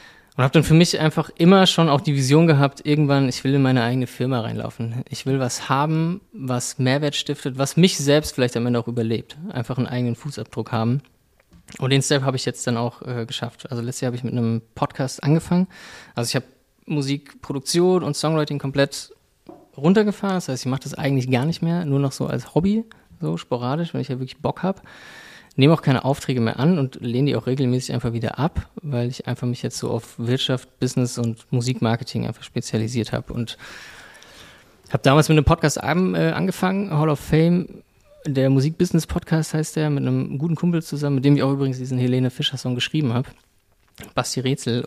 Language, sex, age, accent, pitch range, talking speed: German, male, 20-39, German, 125-155 Hz, 200 wpm